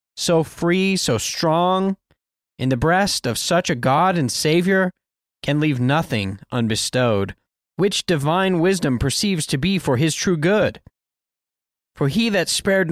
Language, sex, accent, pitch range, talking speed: English, male, American, 120-185 Hz, 145 wpm